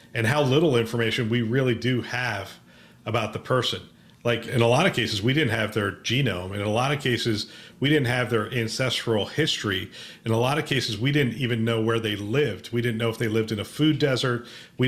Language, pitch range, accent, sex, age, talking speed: English, 115-140 Hz, American, male, 40-59, 225 wpm